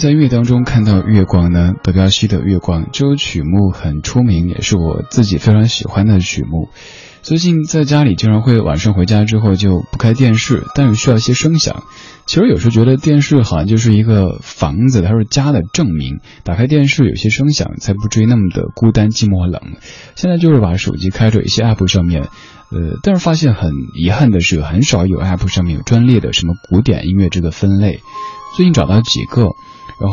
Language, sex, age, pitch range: Chinese, male, 20-39, 95-130 Hz